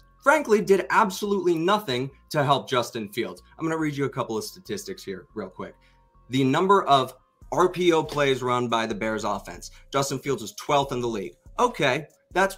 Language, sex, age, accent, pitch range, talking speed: English, male, 30-49, American, 125-190 Hz, 185 wpm